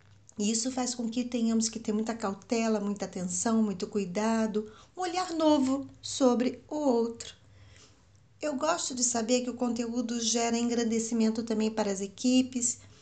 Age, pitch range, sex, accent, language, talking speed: 40-59, 190-230 Hz, female, Brazilian, Portuguese, 145 wpm